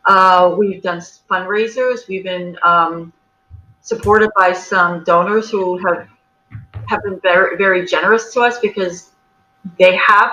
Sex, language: female, English